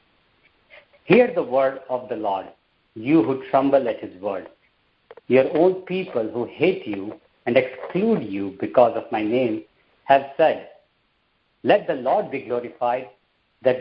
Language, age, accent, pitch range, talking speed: English, 50-69, Indian, 130-170 Hz, 145 wpm